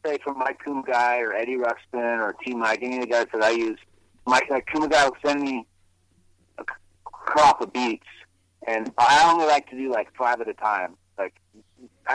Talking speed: 200 wpm